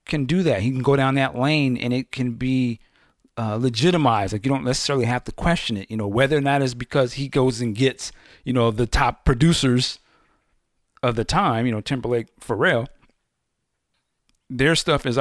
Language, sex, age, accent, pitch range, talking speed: English, male, 50-69, American, 110-145 Hz, 195 wpm